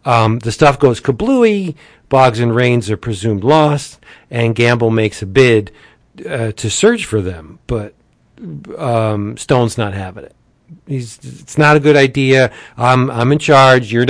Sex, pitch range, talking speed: male, 115-145 Hz, 160 wpm